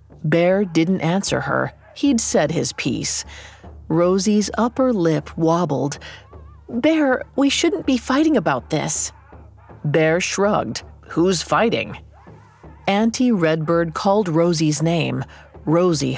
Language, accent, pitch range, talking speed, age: English, American, 135-205 Hz, 110 wpm, 40-59